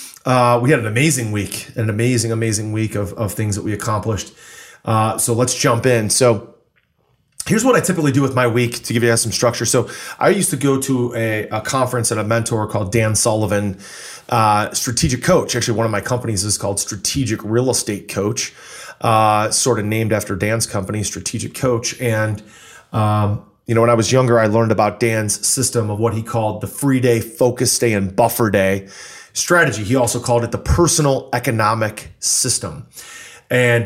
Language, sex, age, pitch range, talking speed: English, male, 30-49, 110-125 Hz, 190 wpm